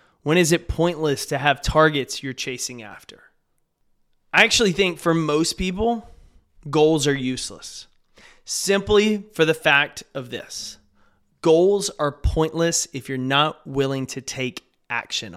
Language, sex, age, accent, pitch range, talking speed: English, male, 20-39, American, 155-195 Hz, 135 wpm